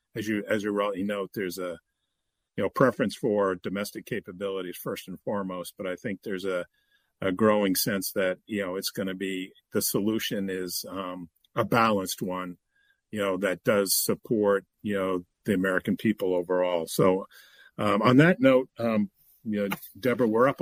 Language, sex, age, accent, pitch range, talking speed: English, male, 50-69, American, 100-145 Hz, 180 wpm